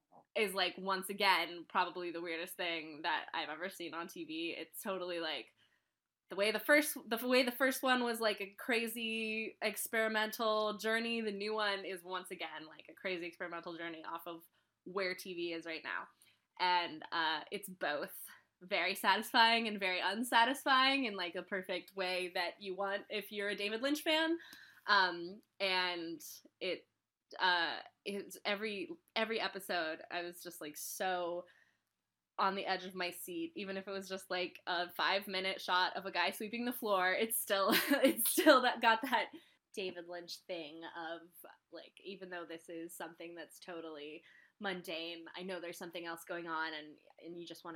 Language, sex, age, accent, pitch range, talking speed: English, female, 20-39, American, 170-215 Hz, 175 wpm